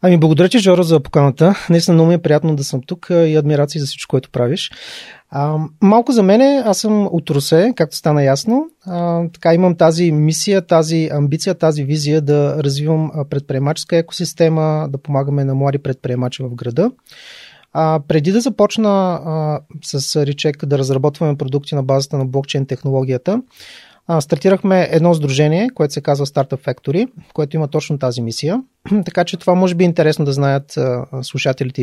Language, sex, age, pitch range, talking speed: Bulgarian, male, 30-49, 140-175 Hz, 170 wpm